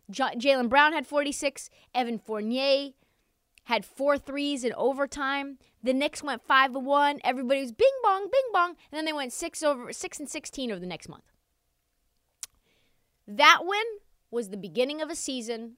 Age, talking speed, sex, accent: 20-39, 165 wpm, female, American